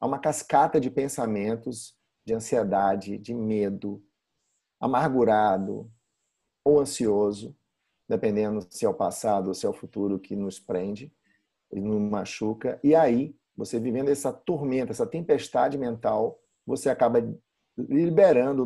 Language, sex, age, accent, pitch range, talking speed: Portuguese, male, 50-69, Brazilian, 115-150 Hz, 130 wpm